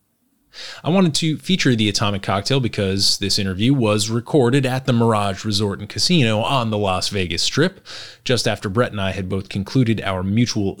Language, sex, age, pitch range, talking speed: English, male, 30-49, 100-135 Hz, 185 wpm